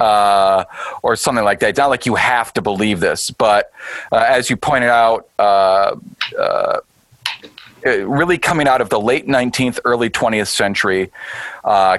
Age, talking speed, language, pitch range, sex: 40-59, 160 wpm, English, 95-120 Hz, male